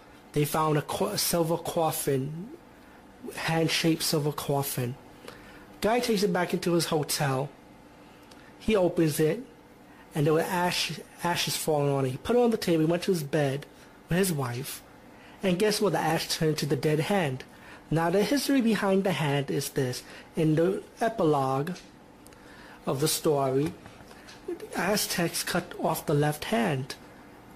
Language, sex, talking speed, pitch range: English, male, 155 wpm, 145-180 Hz